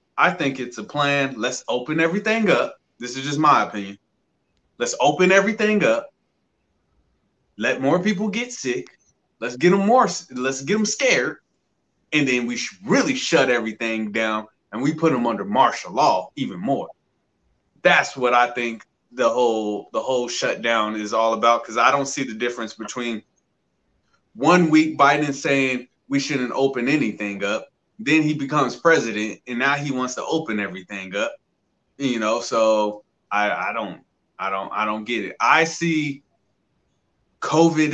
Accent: American